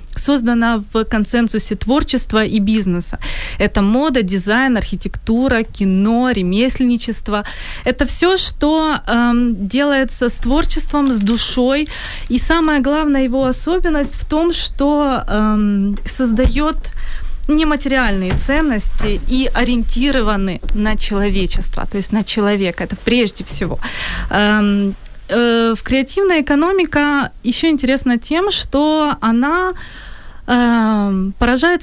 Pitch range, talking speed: 205-275 Hz, 100 wpm